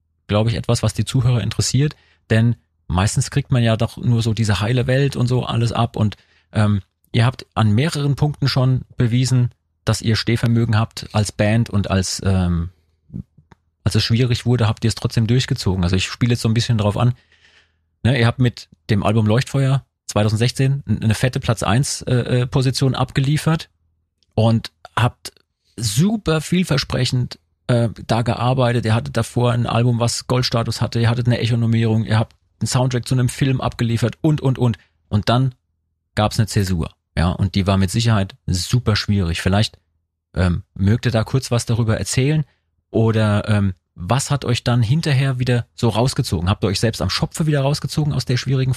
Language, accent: German, German